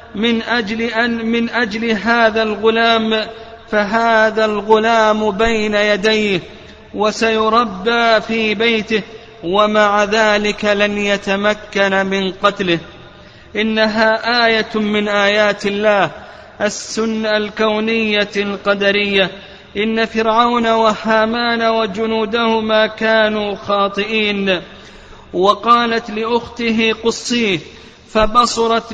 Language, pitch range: Arabic, 210-225 Hz